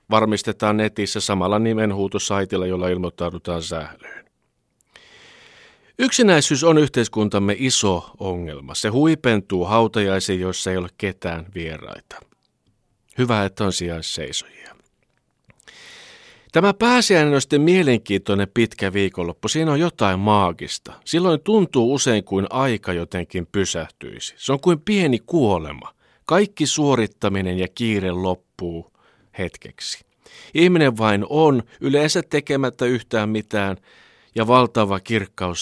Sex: male